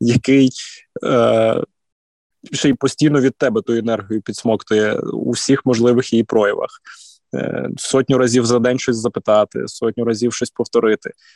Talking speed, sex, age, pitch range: 135 wpm, male, 20-39, 110-125 Hz